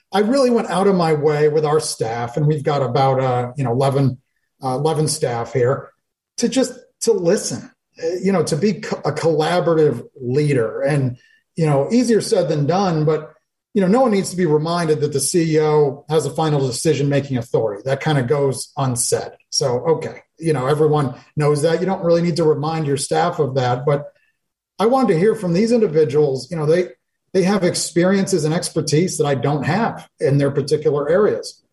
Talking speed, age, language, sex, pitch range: 200 wpm, 30-49, English, male, 145-175 Hz